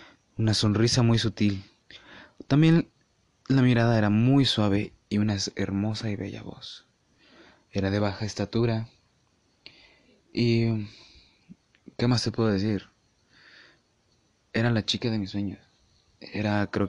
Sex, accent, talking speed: male, Mexican, 120 wpm